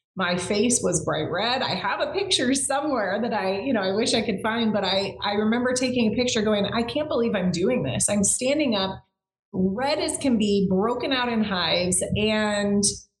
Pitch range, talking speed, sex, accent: 190-235 Hz, 205 wpm, female, American